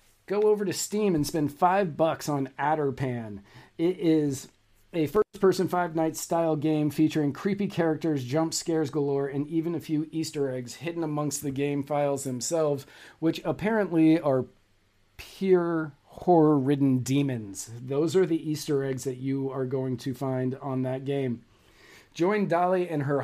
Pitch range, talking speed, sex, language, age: 140-180 Hz, 155 wpm, male, English, 40-59